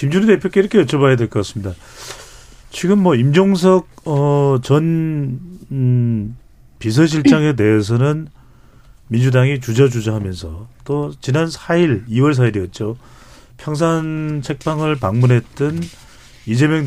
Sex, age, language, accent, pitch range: male, 40-59, Korean, native, 120-160 Hz